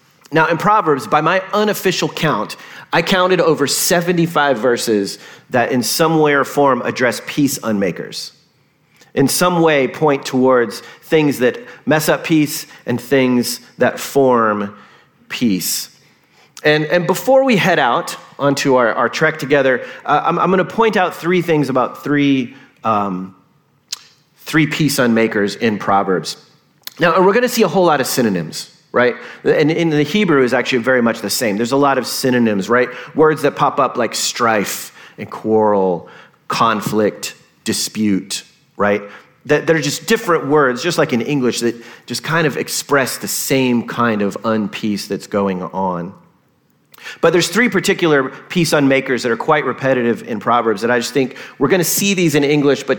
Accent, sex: American, male